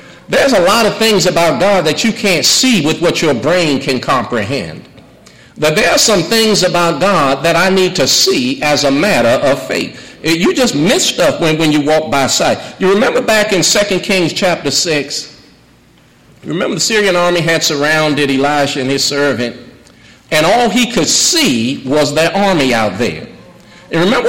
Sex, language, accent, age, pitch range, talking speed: male, English, American, 50-69, 155-215 Hz, 185 wpm